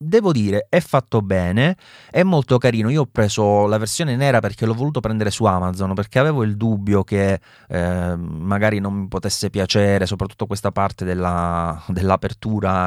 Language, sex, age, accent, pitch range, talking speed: Italian, male, 30-49, native, 95-120 Hz, 165 wpm